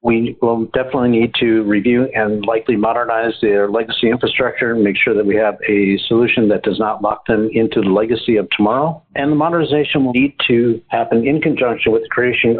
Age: 50-69